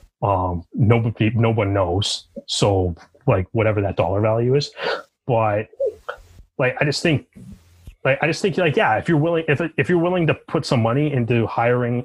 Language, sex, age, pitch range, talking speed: English, male, 30-49, 105-140 Hz, 180 wpm